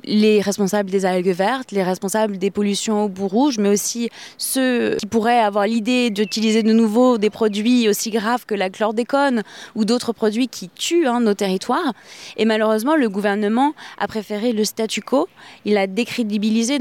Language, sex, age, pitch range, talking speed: French, female, 20-39, 210-245 Hz, 175 wpm